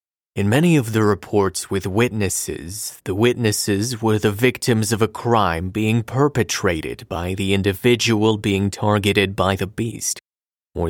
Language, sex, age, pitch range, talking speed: English, male, 30-49, 100-125 Hz, 145 wpm